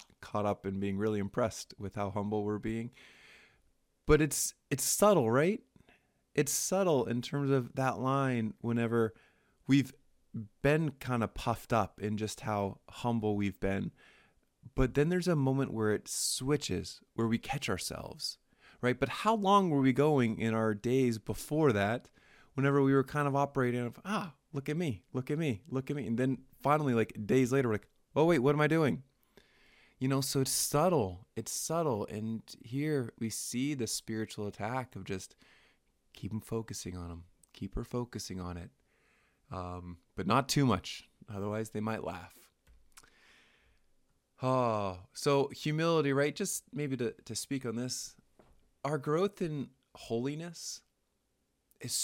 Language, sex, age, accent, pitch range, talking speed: English, male, 20-39, American, 105-140 Hz, 165 wpm